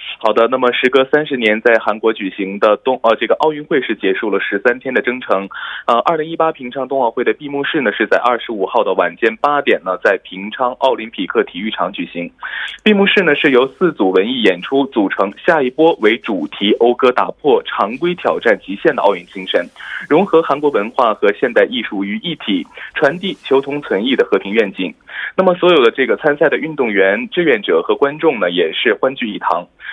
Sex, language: male, Korean